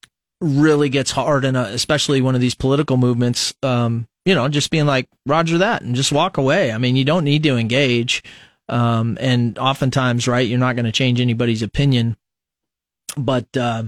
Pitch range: 125-150 Hz